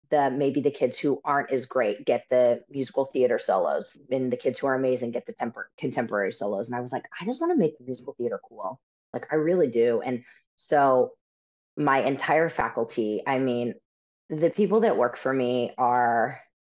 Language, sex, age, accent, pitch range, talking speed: English, female, 30-49, American, 120-140 Hz, 190 wpm